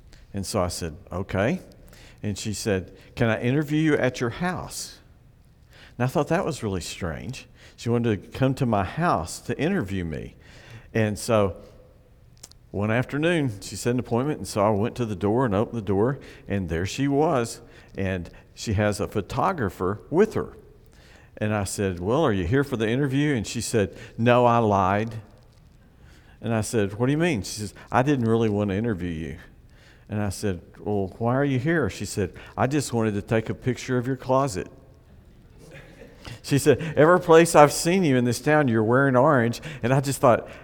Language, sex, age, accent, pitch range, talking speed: English, male, 50-69, American, 105-140 Hz, 195 wpm